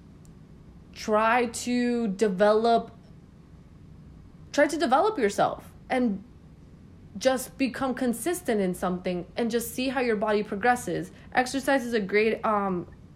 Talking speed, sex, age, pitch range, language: 115 wpm, female, 20-39, 195-235 Hz, English